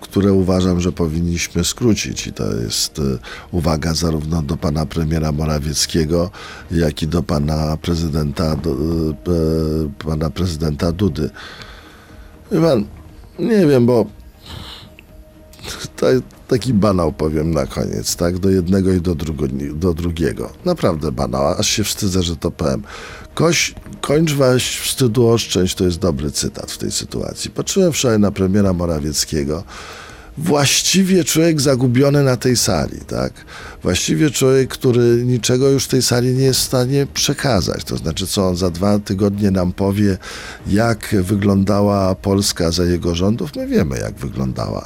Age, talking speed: 50-69, 140 wpm